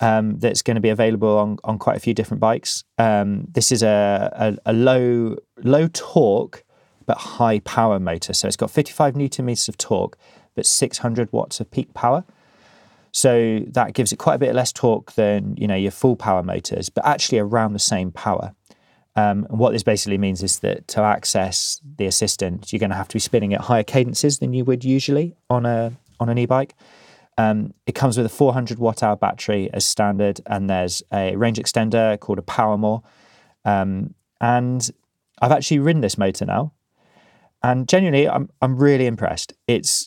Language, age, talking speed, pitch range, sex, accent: English, 20-39, 195 wpm, 100-120 Hz, male, British